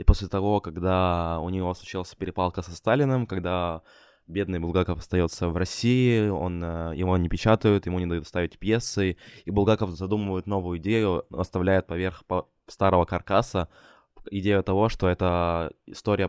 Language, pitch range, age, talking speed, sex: Ukrainian, 85-100 Hz, 20-39, 145 wpm, male